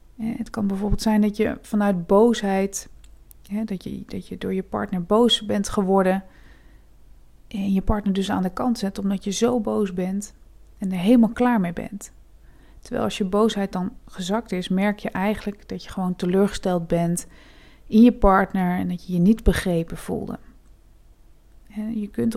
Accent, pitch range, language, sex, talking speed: Dutch, 185-220 Hz, Dutch, female, 170 wpm